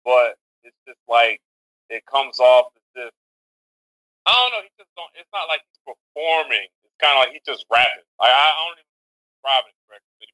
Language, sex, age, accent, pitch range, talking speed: English, male, 20-39, American, 100-135 Hz, 205 wpm